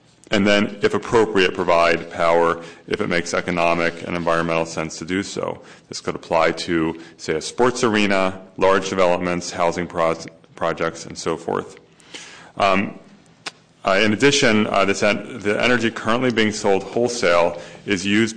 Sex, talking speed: male, 145 wpm